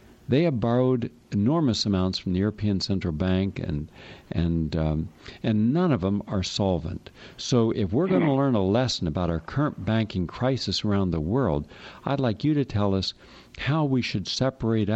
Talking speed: 180 wpm